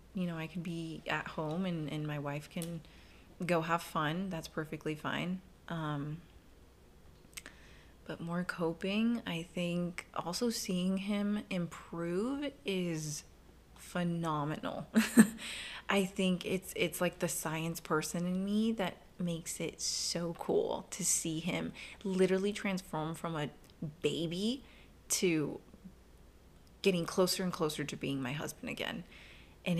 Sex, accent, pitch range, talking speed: female, American, 155-190 Hz, 130 wpm